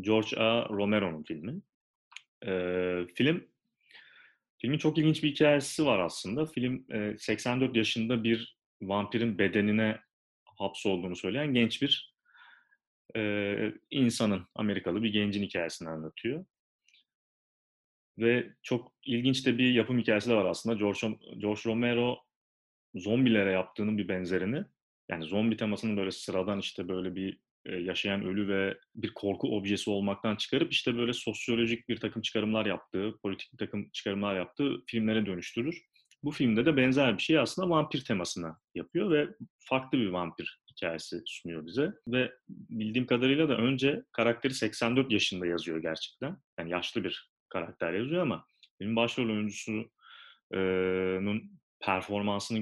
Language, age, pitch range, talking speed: Turkish, 30-49, 100-125 Hz, 130 wpm